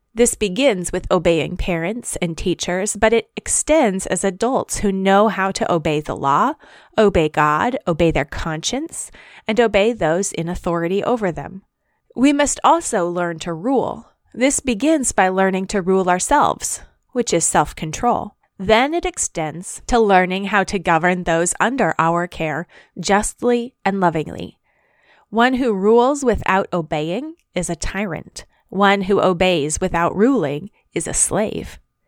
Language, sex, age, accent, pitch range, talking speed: English, female, 30-49, American, 180-240 Hz, 145 wpm